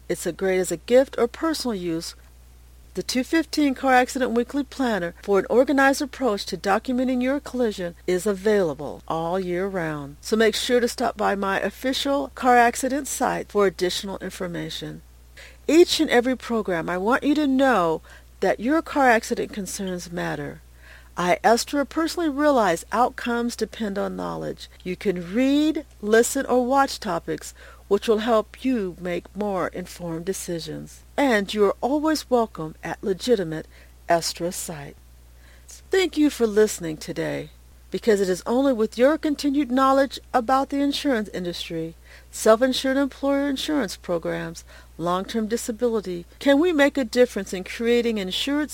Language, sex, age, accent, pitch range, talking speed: English, female, 50-69, American, 175-260 Hz, 150 wpm